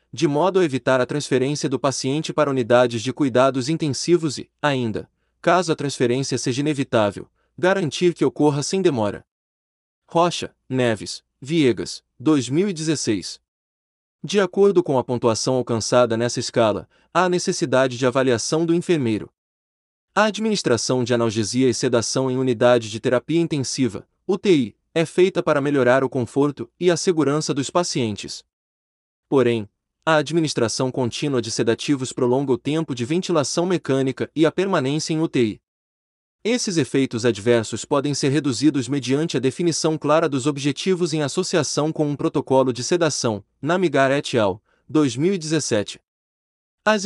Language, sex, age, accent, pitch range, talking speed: Portuguese, male, 30-49, Brazilian, 120-160 Hz, 135 wpm